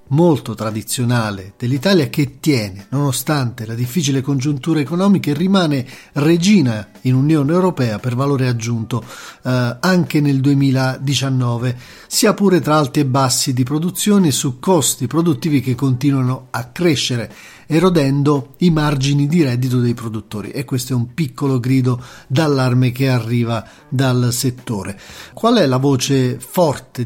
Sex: male